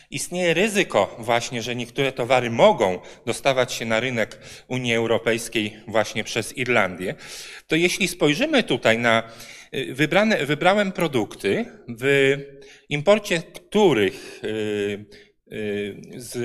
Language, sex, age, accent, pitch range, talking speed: Polish, male, 40-59, native, 120-160 Hz, 100 wpm